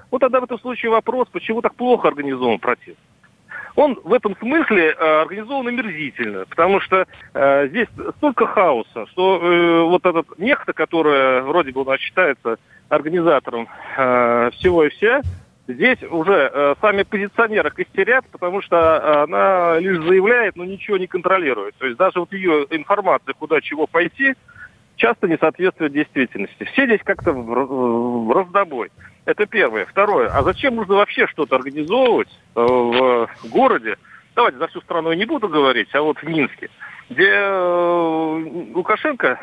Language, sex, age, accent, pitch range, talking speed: Russian, male, 40-59, native, 150-225 Hz, 150 wpm